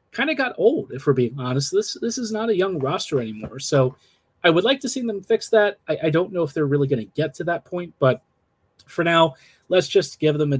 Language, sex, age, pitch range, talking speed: English, male, 30-49, 135-170 Hz, 260 wpm